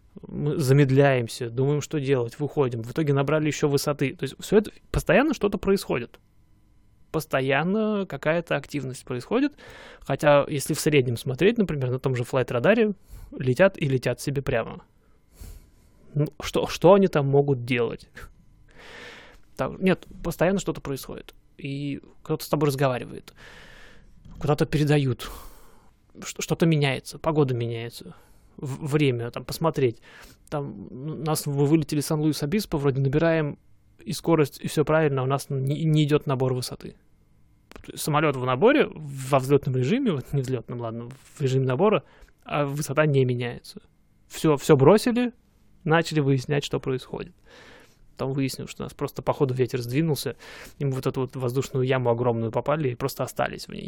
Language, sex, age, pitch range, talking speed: Russian, male, 20-39, 130-160 Hz, 140 wpm